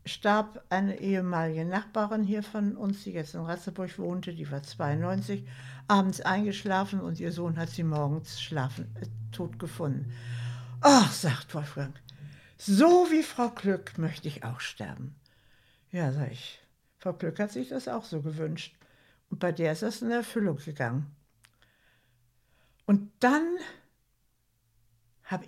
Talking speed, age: 145 wpm, 60-79